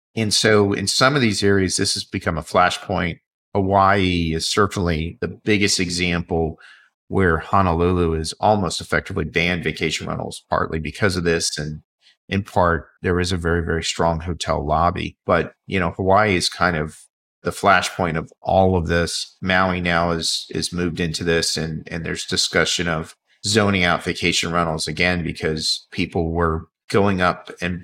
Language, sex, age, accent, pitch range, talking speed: English, male, 40-59, American, 80-95 Hz, 165 wpm